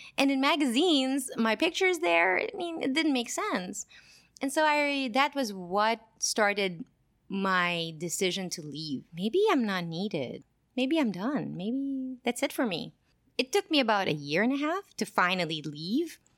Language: English